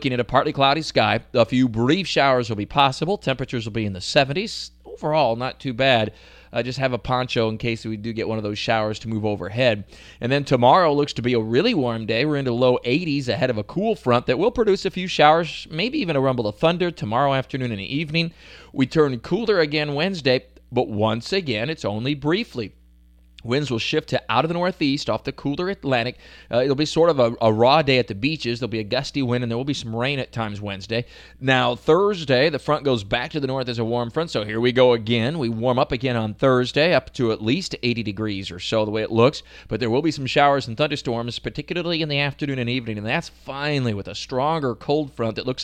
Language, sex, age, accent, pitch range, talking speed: English, male, 30-49, American, 115-145 Hz, 240 wpm